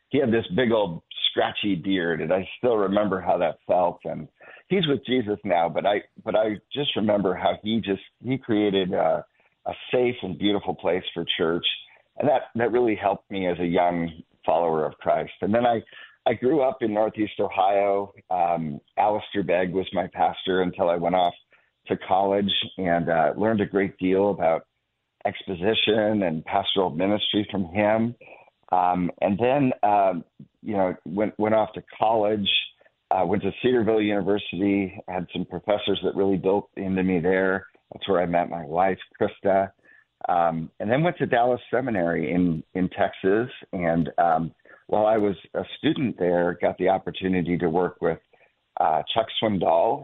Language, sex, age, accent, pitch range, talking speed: English, male, 50-69, American, 90-105 Hz, 170 wpm